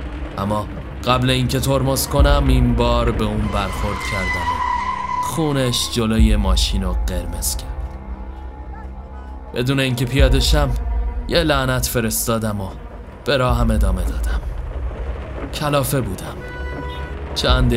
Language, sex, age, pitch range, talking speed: Persian, male, 20-39, 75-125 Hz, 105 wpm